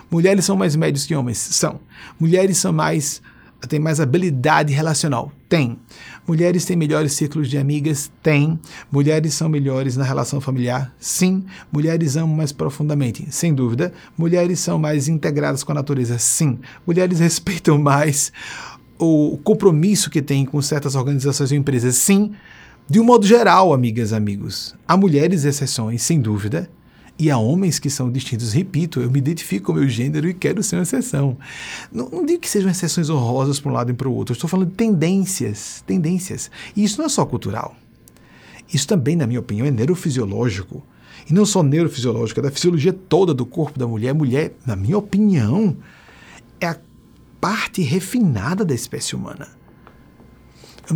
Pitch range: 130-175 Hz